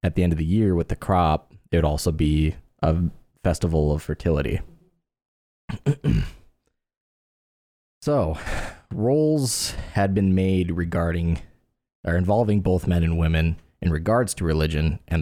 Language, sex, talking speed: English, male, 135 wpm